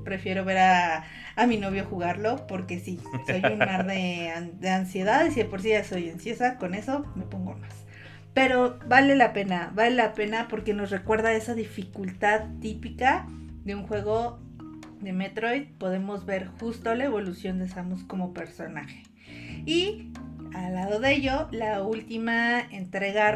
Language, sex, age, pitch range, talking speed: Spanish, female, 40-59, 180-230 Hz, 160 wpm